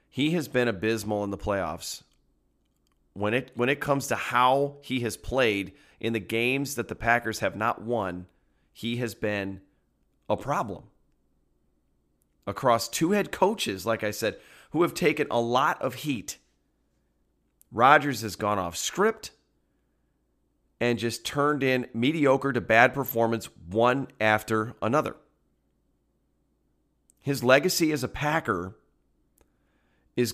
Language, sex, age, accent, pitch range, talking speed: English, male, 30-49, American, 100-130 Hz, 130 wpm